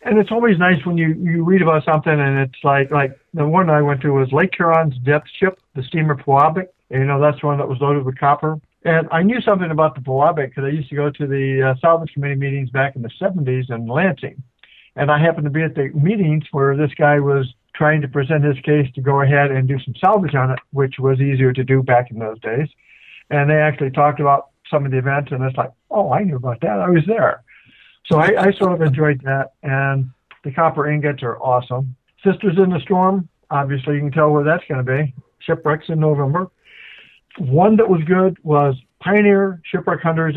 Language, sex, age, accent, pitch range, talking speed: English, male, 60-79, American, 135-165 Hz, 230 wpm